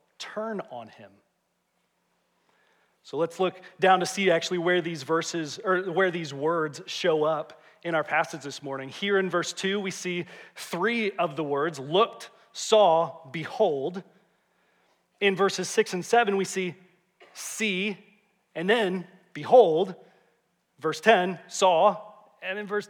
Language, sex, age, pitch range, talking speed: English, male, 30-49, 155-195 Hz, 140 wpm